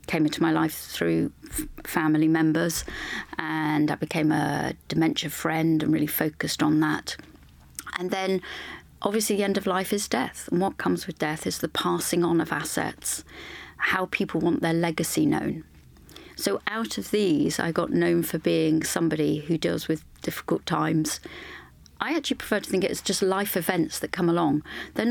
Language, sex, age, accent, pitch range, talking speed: English, female, 30-49, British, 155-190 Hz, 170 wpm